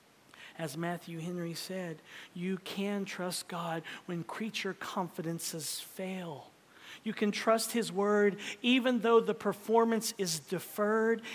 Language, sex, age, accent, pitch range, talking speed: English, male, 40-59, American, 205-280 Hz, 120 wpm